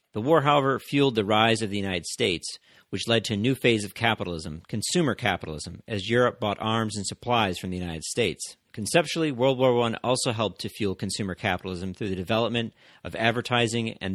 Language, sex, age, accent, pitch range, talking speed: English, male, 40-59, American, 95-120 Hz, 195 wpm